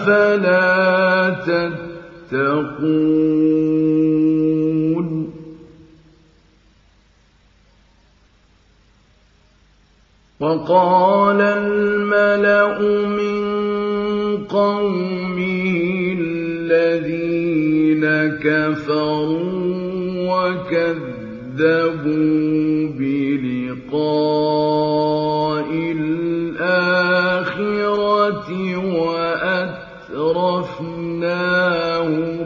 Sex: male